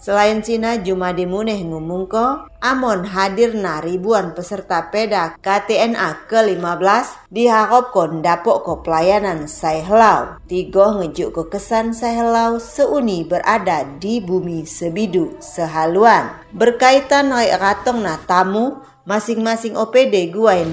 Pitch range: 175-225 Hz